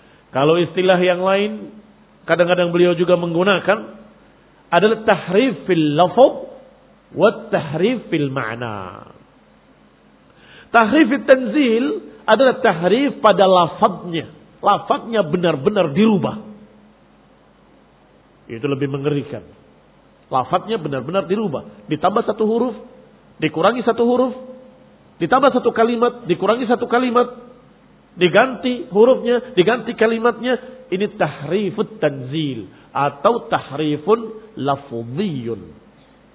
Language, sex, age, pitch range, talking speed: Indonesian, male, 50-69, 170-245 Hz, 85 wpm